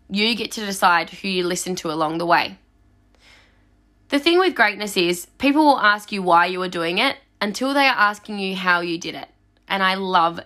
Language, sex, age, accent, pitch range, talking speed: English, female, 10-29, Australian, 180-260 Hz, 210 wpm